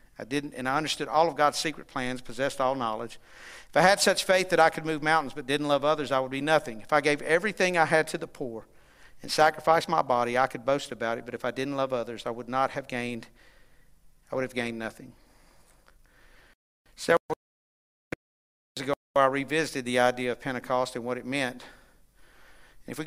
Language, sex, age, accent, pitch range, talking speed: English, male, 50-69, American, 125-155 Hz, 210 wpm